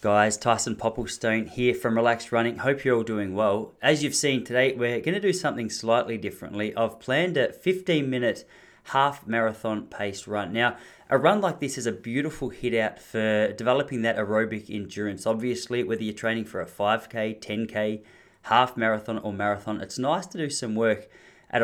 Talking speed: 180 wpm